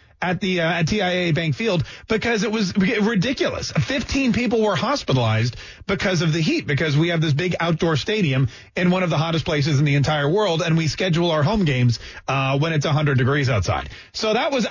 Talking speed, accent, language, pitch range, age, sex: 210 wpm, American, English, 145-225 Hz, 30-49, male